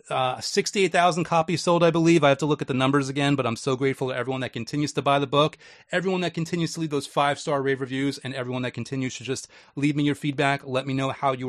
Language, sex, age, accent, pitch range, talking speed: English, male, 30-49, American, 130-155 Hz, 265 wpm